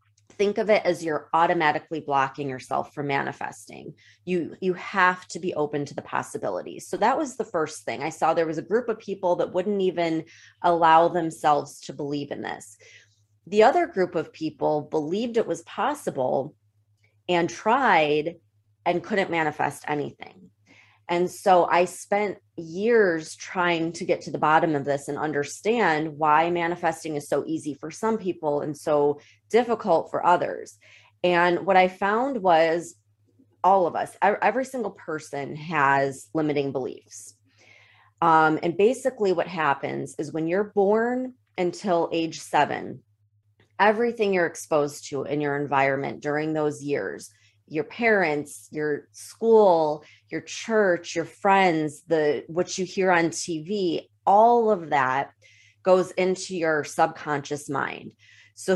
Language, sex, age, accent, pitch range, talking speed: English, female, 30-49, American, 145-180 Hz, 145 wpm